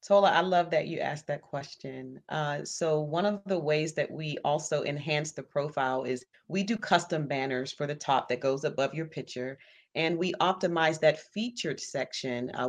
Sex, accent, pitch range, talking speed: female, American, 145-175 Hz, 190 wpm